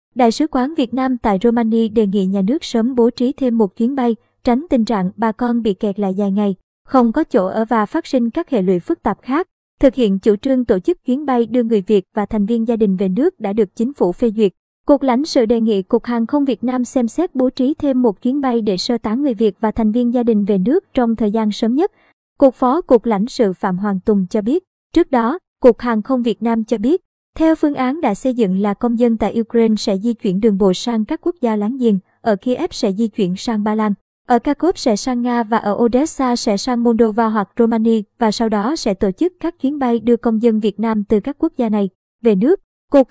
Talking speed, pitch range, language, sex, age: 255 wpm, 220-260 Hz, Vietnamese, male, 20-39